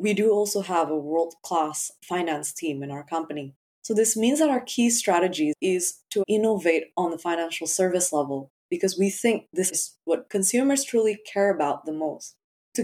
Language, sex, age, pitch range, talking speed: English, female, 20-39, 160-210 Hz, 180 wpm